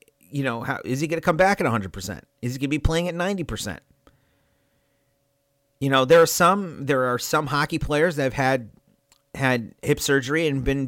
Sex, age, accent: male, 40-59, American